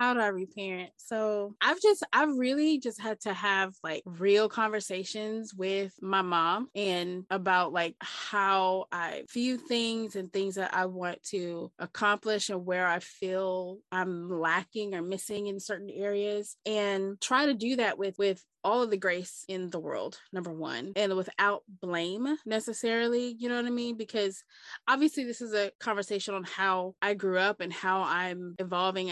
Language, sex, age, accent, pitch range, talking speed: English, female, 20-39, American, 185-220 Hz, 175 wpm